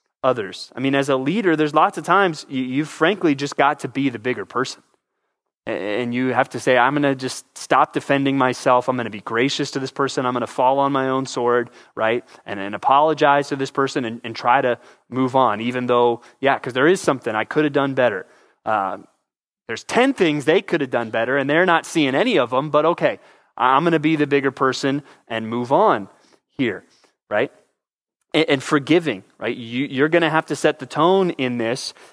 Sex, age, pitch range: male, 20-39, 125-150 Hz